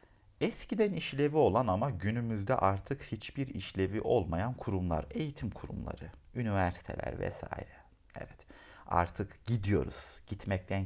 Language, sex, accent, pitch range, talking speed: Turkish, male, native, 85-115 Hz, 100 wpm